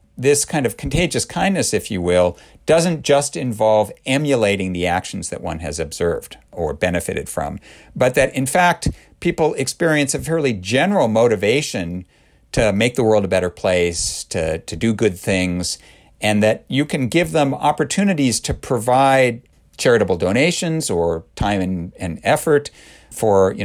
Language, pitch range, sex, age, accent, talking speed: English, 95-145 Hz, male, 50-69, American, 155 wpm